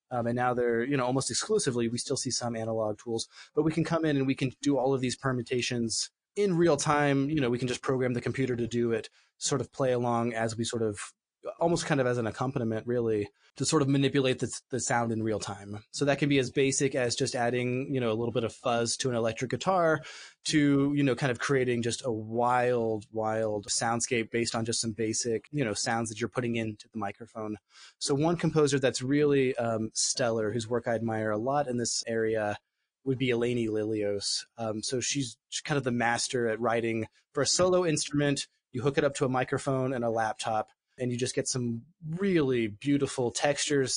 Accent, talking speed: American, 220 wpm